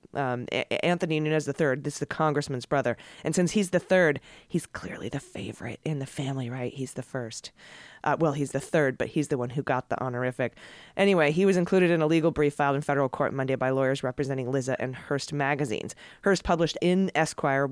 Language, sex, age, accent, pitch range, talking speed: English, female, 30-49, American, 135-180 Hz, 210 wpm